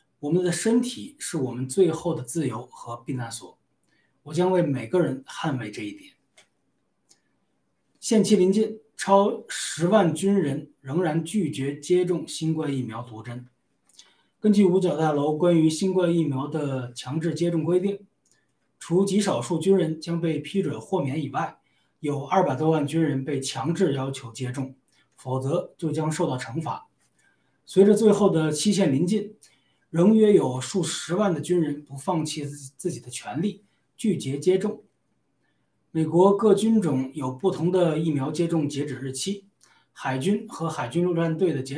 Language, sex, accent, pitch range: Chinese, male, native, 145-185 Hz